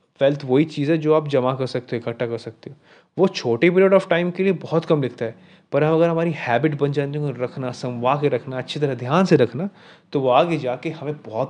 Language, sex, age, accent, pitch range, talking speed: Hindi, male, 20-39, native, 125-160 Hz, 245 wpm